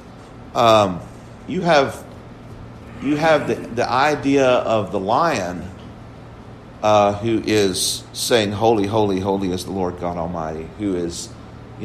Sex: male